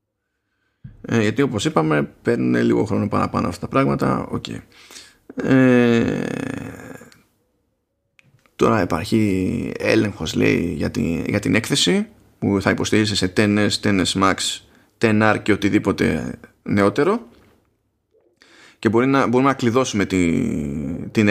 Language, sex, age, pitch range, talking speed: Greek, male, 20-39, 105-135 Hz, 115 wpm